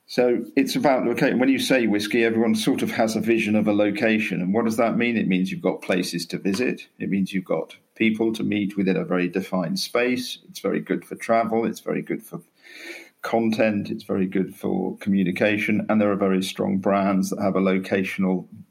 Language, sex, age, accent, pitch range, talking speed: English, male, 40-59, British, 95-120 Hz, 210 wpm